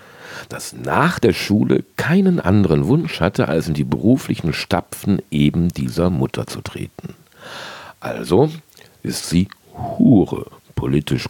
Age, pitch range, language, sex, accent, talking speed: 50-69, 70-95 Hz, German, male, German, 120 wpm